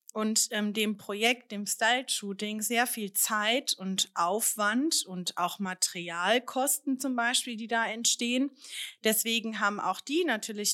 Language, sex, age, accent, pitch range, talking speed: German, female, 30-49, German, 200-240 Hz, 140 wpm